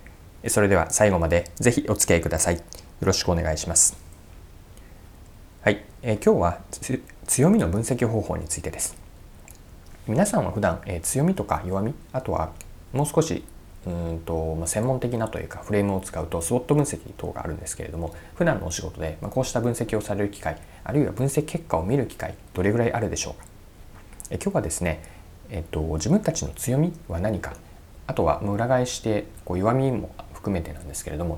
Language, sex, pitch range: Japanese, male, 85-110 Hz